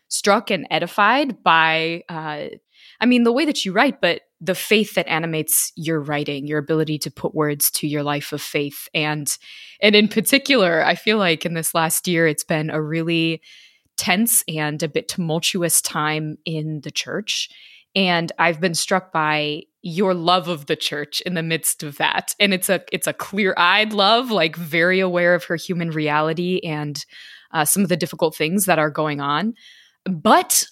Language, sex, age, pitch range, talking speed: English, female, 20-39, 155-195 Hz, 185 wpm